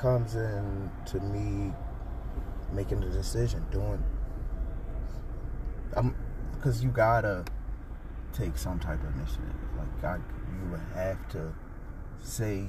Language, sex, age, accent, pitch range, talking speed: English, male, 20-39, American, 90-125 Hz, 105 wpm